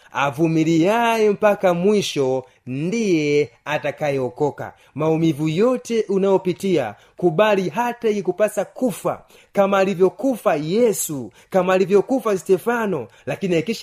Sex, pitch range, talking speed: male, 140-190 Hz, 90 wpm